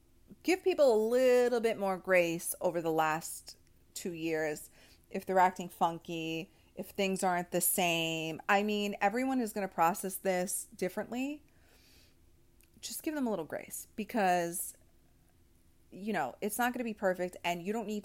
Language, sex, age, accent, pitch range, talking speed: English, female, 30-49, American, 175-225 Hz, 165 wpm